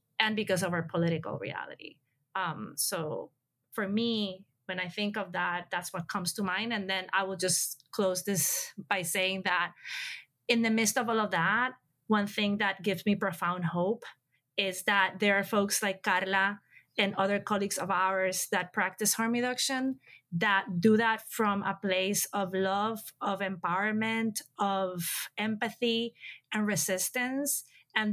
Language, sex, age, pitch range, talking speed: English, female, 20-39, 185-220 Hz, 160 wpm